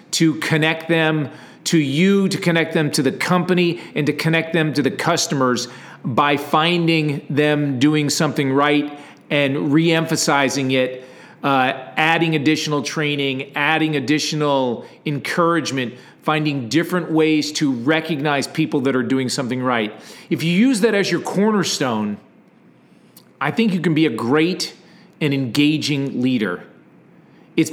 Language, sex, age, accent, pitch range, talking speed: English, male, 40-59, American, 145-175 Hz, 135 wpm